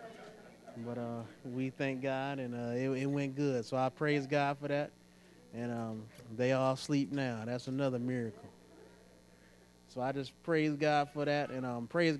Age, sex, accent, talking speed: 20-39, male, American, 175 wpm